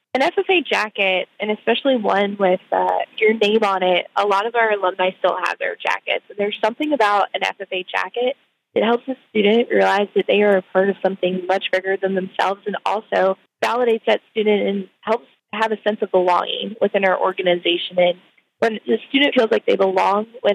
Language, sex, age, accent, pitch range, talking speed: English, female, 20-39, American, 190-225 Hz, 195 wpm